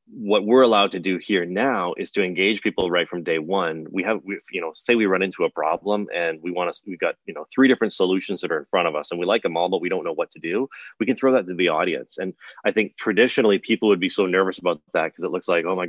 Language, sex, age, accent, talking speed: English, male, 30-49, American, 295 wpm